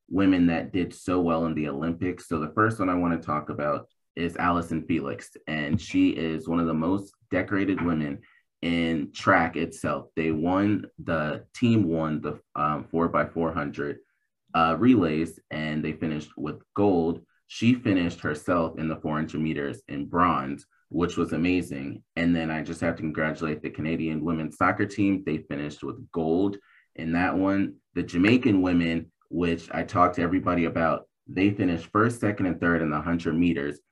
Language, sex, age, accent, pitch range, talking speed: English, male, 30-49, American, 80-90 Hz, 170 wpm